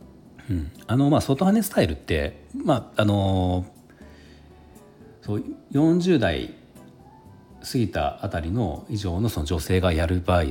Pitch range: 80-125 Hz